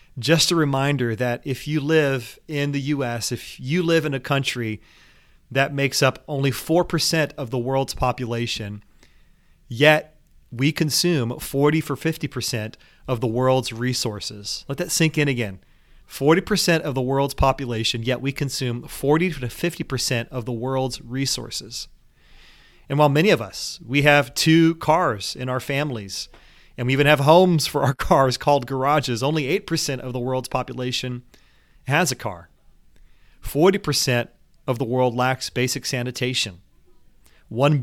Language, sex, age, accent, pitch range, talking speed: English, male, 30-49, American, 125-150 Hz, 150 wpm